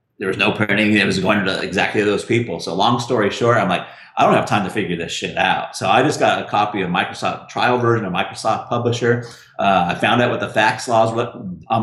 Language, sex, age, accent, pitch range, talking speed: English, male, 30-49, American, 95-120 Hz, 250 wpm